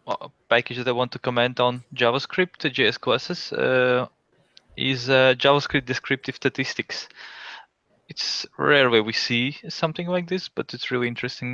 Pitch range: 115-130 Hz